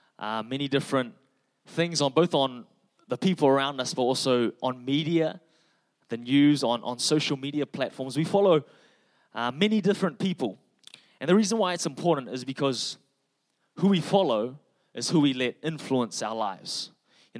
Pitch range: 125-160 Hz